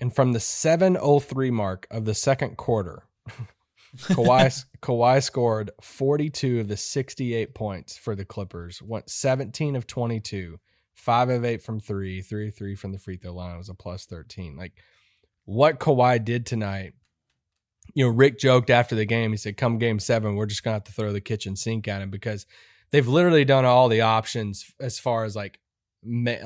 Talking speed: 195 wpm